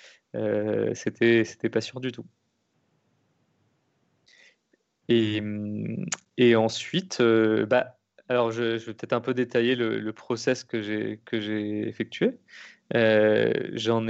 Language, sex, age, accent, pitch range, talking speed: French, male, 20-39, French, 110-125 Hz, 130 wpm